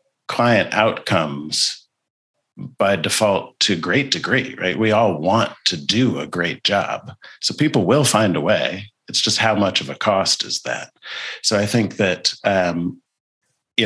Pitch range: 90-110 Hz